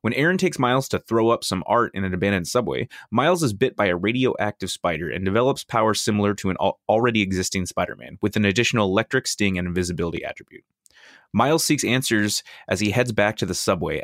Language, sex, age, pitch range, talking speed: English, male, 20-39, 95-120 Hz, 200 wpm